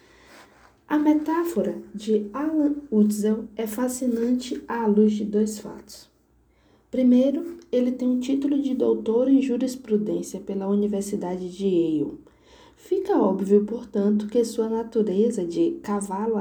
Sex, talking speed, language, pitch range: female, 120 wpm, Portuguese, 195-260 Hz